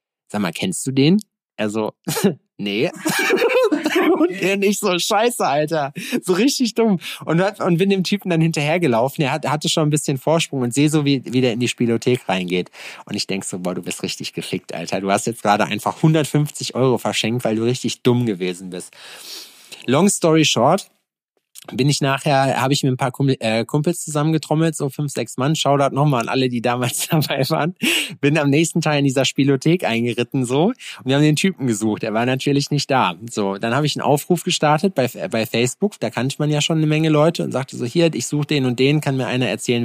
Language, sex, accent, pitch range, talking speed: German, male, German, 125-160 Hz, 215 wpm